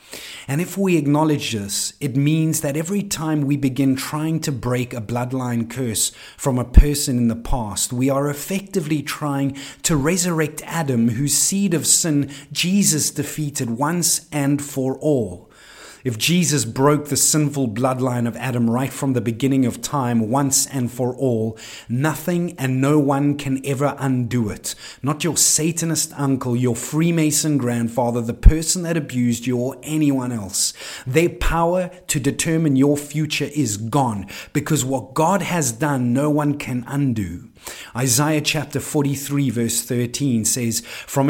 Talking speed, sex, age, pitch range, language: 155 wpm, male, 30-49, 120-150 Hz, English